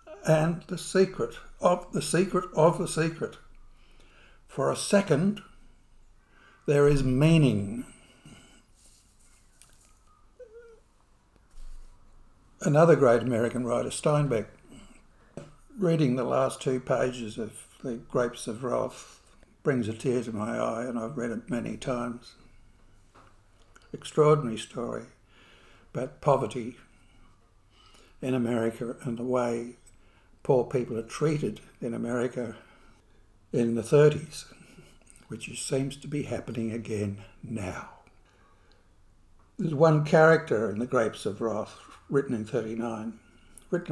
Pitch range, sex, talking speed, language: 105-150 Hz, male, 110 wpm, English